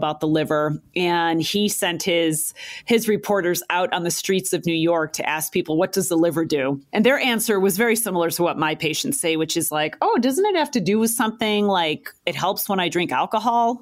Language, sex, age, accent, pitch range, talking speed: English, female, 30-49, American, 170-220 Hz, 230 wpm